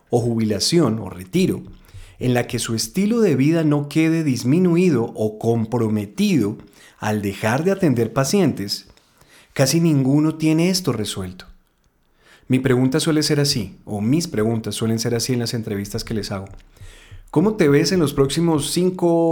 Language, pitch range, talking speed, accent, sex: Spanish, 105-150 Hz, 155 wpm, Colombian, male